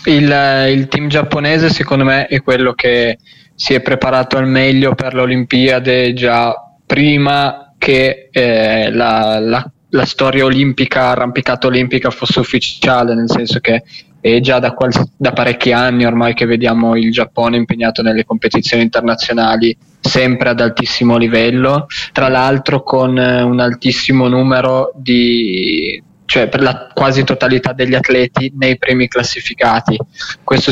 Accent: native